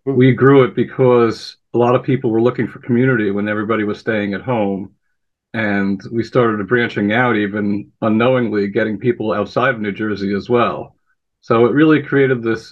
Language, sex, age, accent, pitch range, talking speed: English, male, 50-69, American, 110-125 Hz, 180 wpm